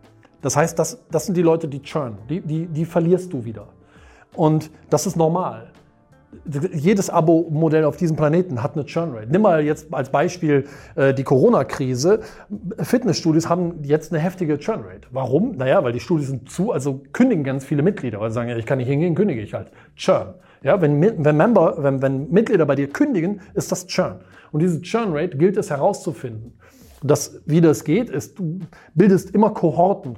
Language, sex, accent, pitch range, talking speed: German, male, German, 140-190 Hz, 180 wpm